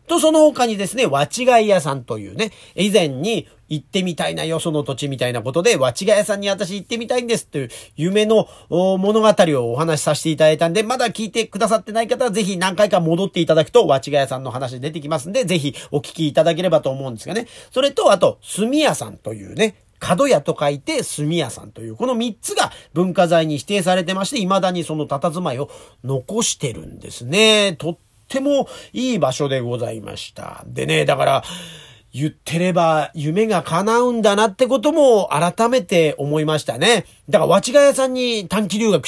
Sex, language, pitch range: male, Japanese, 140-220 Hz